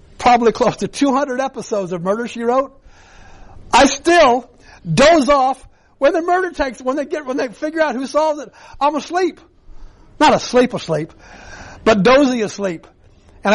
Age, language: 60-79, English